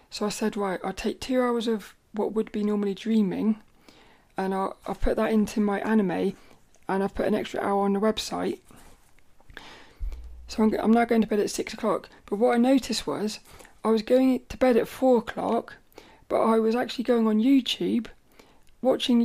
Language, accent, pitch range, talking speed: English, British, 200-240 Hz, 195 wpm